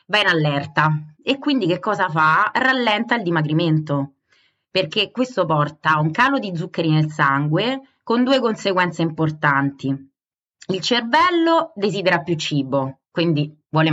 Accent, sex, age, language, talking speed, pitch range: native, female, 20-39, Italian, 135 wpm, 155-200 Hz